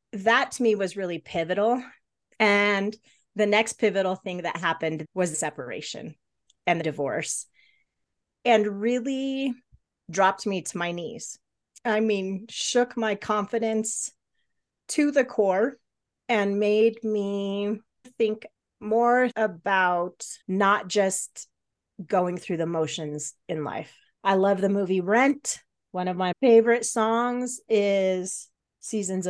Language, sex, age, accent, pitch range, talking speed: English, female, 30-49, American, 175-220 Hz, 125 wpm